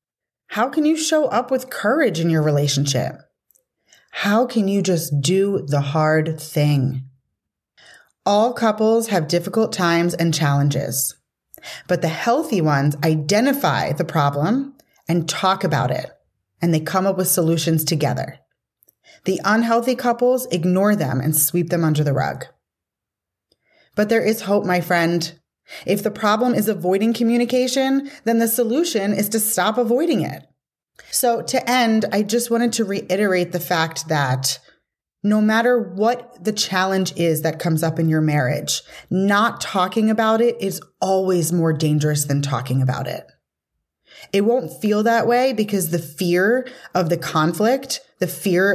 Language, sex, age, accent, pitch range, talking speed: English, female, 30-49, American, 160-225 Hz, 150 wpm